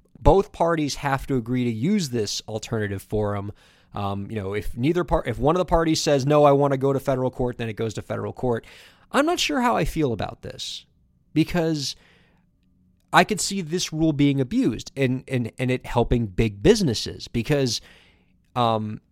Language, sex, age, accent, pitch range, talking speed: English, male, 20-39, American, 115-165 Hz, 190 wpm